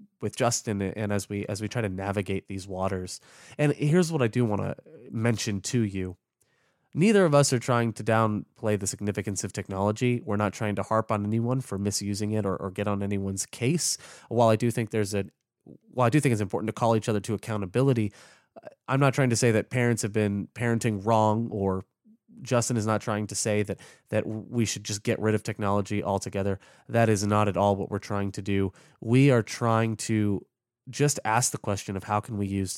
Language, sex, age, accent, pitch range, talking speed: English, male, 20-39, American, 100-120 Hz, 215 wpm